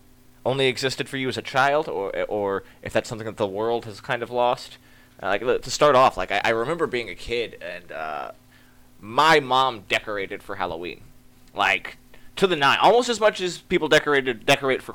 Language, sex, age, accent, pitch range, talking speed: English, male, 20-39, American, 100-125 Hz, 200 wpm